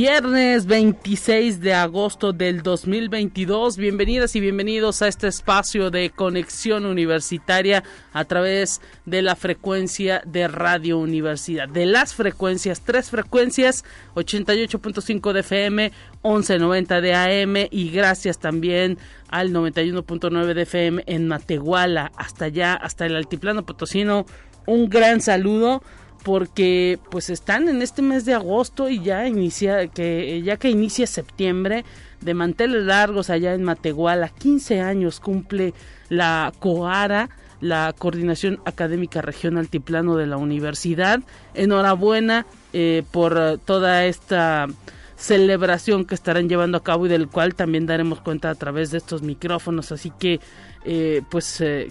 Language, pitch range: Spanish, 170-205 Hz